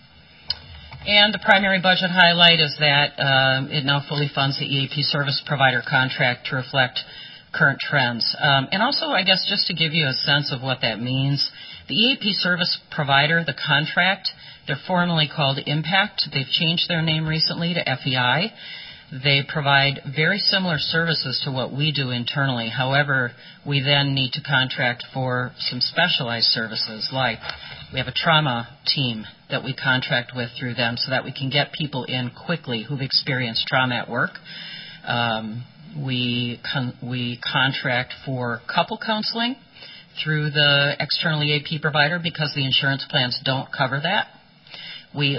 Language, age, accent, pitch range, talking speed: English, 40-59, American, 125-155 Hz, 155 wpm